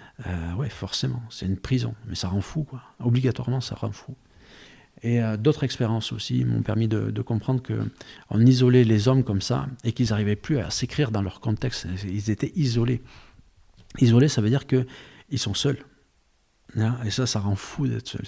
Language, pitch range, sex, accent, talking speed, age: French, 105-130 Hz, male, French, 190 wpm, 50-69